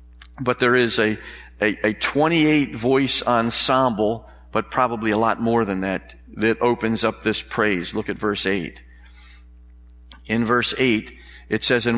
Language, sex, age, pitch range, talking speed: English, male, 50-69, 95-120 Hz, 150 wpm